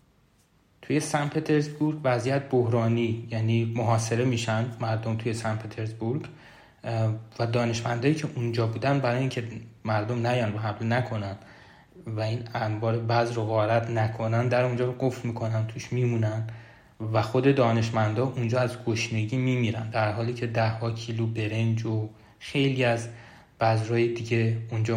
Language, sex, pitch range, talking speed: Persian, male, 115-125 Hz, 140 wpm